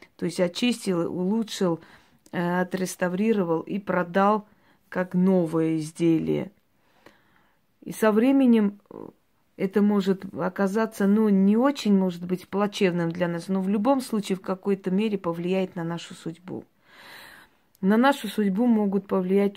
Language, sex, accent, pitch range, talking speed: Russian, female, native, 175-205 Hz, 125 wpm